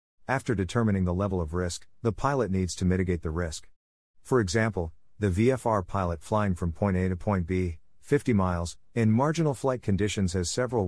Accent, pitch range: American, 85-120 Hz